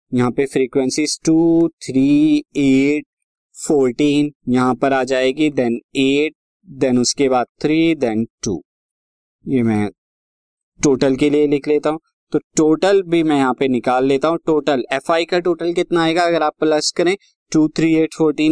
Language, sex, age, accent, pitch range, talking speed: Hindi, male, 20-39, native, 135-175 Hz, 165 wpm